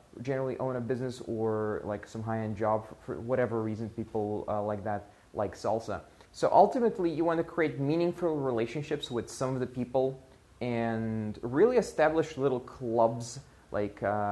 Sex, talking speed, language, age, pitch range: male, 155 wpm, English, 20-39, 110-135 Hz